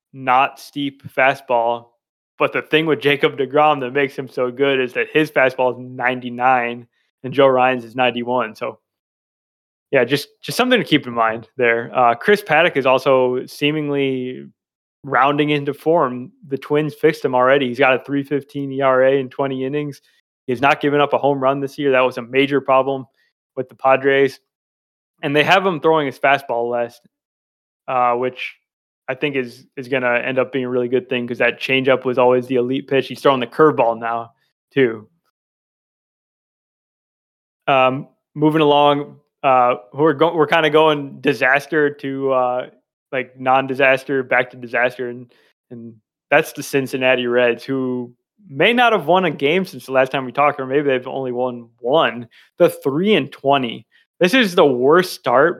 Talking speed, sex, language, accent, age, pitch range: 175 wpm, male, English, American, 20-39, 125-145 Hz